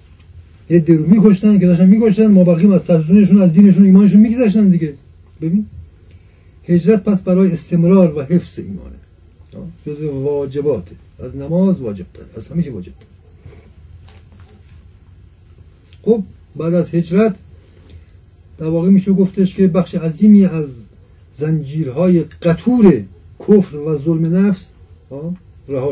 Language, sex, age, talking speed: Persian, male, 50-69, 120 wpm